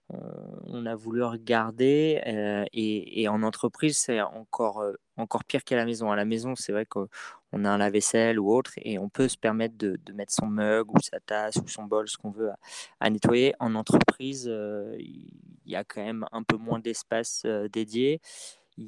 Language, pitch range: French, 105-115 Hz